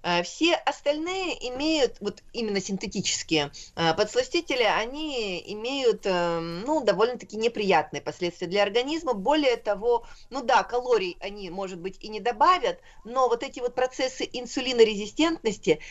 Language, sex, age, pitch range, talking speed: Russian, female, 30-49, 185-260 Hz, 120 wpm